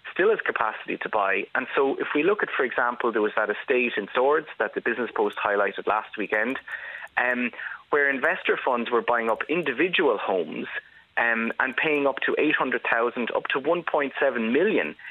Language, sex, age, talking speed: English, male, 30-49, 180 wpm